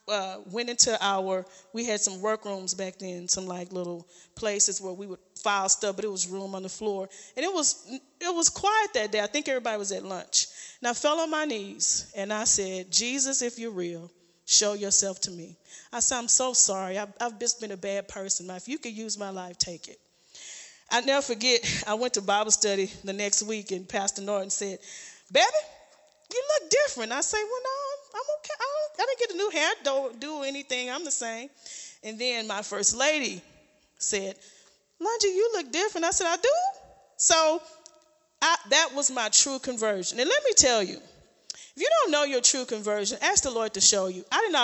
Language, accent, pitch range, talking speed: English, American, 195-290 Hz, 210 wpm